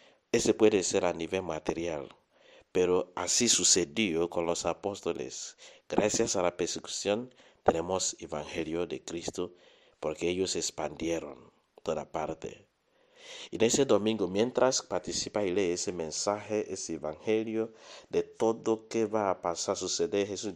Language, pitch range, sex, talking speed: English, 90-120 Hz, male, 130 wpm